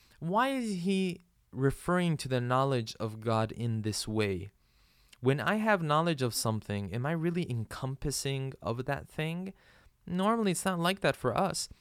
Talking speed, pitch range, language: 165 wpm, 105-140 Hz, English